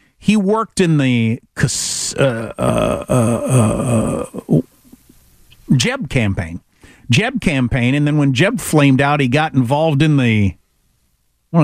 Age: 50-69